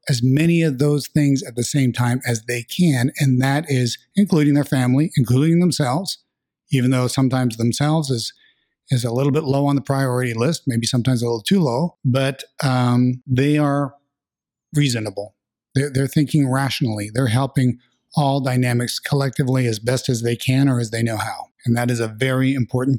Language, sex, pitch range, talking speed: English, male, 125-155 Hz, 185 wpm